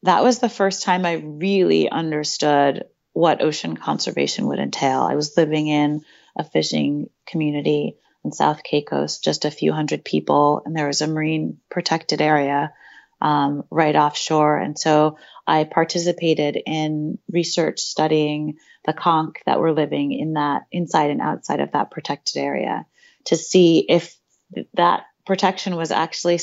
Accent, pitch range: American, 150-175 Hz